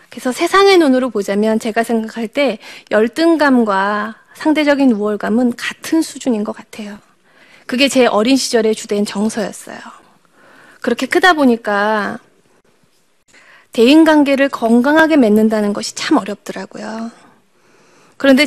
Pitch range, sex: 215-285 Hz, female